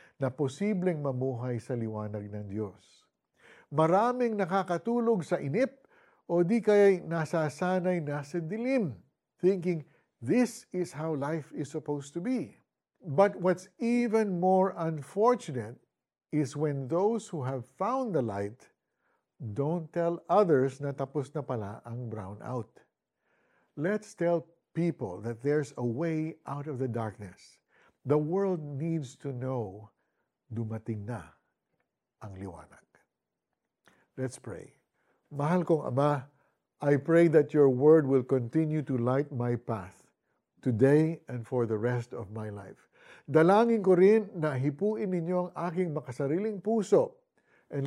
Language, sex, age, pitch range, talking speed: Filipino, male, 50-69, 125-180 Hz, 130 wpm